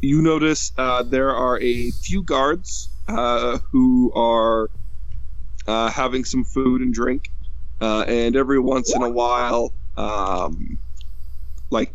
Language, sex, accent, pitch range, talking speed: English, male, American, 75-125 Hz, 130 wpm